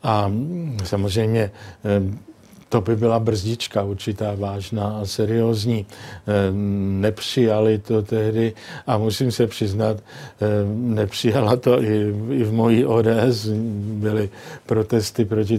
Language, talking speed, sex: Czech, 100 wpm, male